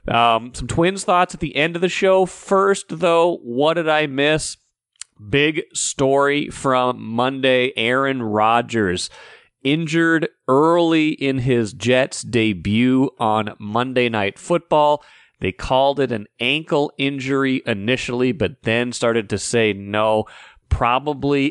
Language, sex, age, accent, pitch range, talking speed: English, male, 40-59, American, 110-135 Hz, 130 wpm